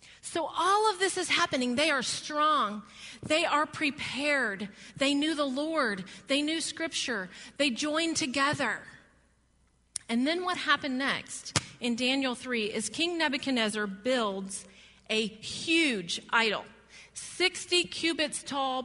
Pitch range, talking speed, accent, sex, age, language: 240-330 Hz, 125 wpm, American, female, 40-59, English